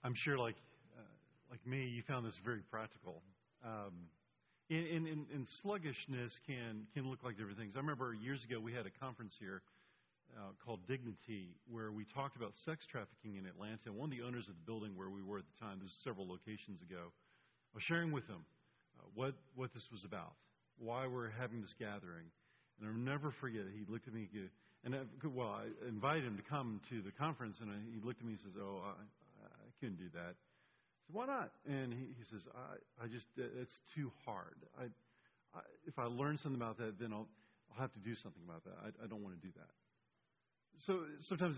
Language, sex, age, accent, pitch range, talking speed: English, male, 40-59, American, 105-135 Hz, 215 wpm